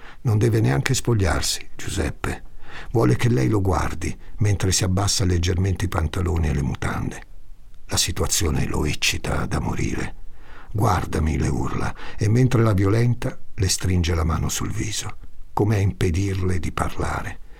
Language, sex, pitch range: Italian, male, 80-110 Hz